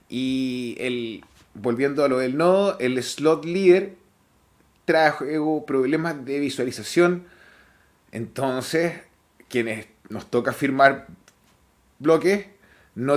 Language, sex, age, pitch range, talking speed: Spanish, male, 30-49, 130-180 Hz, 90 wpm